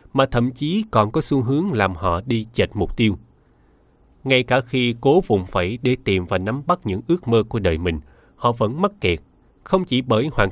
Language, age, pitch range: Vietnamese, 20-39, 95-140 Hz